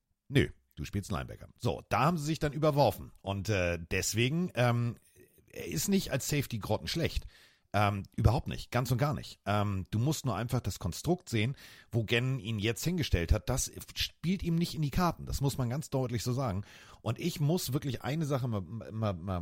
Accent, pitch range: German, 100-140 Hz